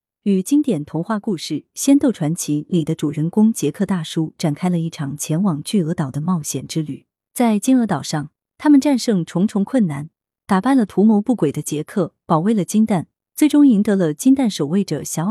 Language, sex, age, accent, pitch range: Chinese, female, 20-39, native, 155-220 Hz